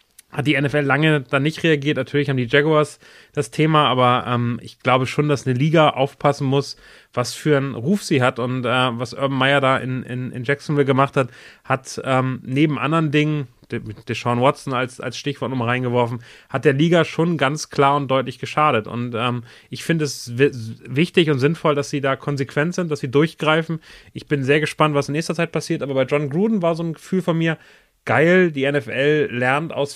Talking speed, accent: 205 wpm, German